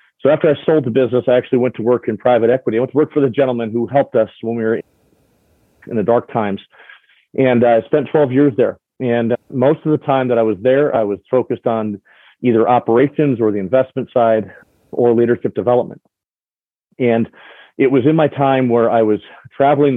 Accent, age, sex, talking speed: American, 40-59, male, 205 wpm